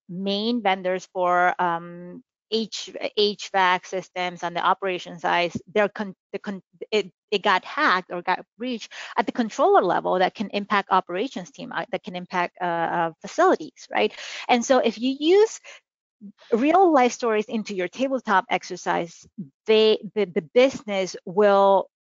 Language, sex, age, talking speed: English, female, 30-49, 145 wpm